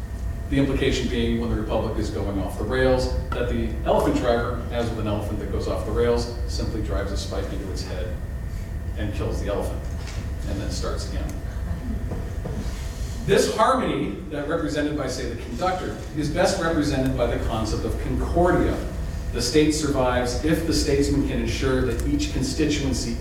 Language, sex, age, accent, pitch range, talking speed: English, male, 40-59, American, 85-135 Hz, 170 wpm